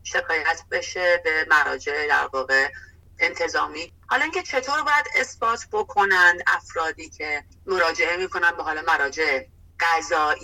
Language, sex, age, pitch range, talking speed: Persian, female, 30-49, 155-245 Hz, 115 wpm